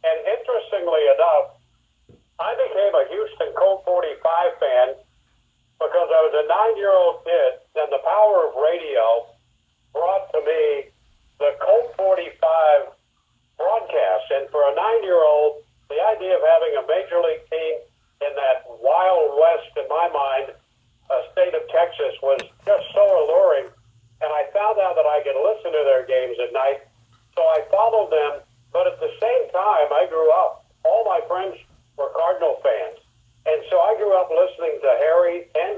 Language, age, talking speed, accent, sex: English, 60-79, 160 wpm, American, male